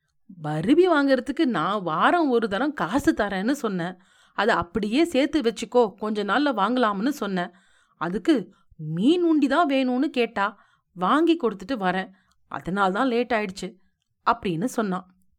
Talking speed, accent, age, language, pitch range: 40 wpm, native, 40-59, Tamil, 185-275 Hz